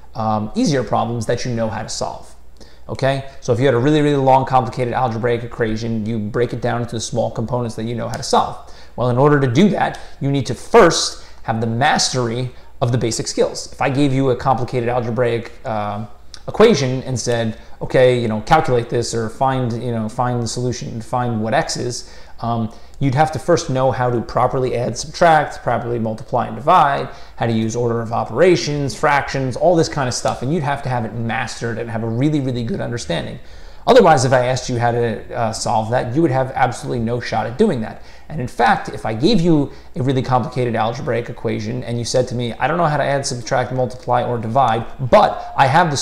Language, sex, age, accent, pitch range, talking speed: English, male, 30-49, American, 115-135 Hz, 220 wpm